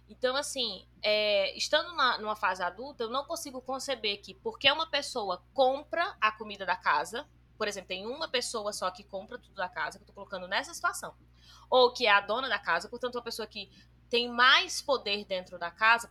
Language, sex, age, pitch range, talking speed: Portuguese, female, 20-39, 205-265 Hz, 205 wpm